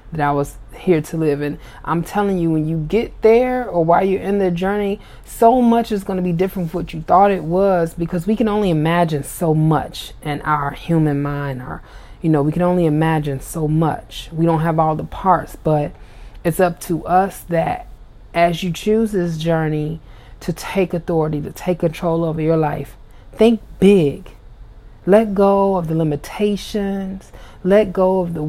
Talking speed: 190 wpm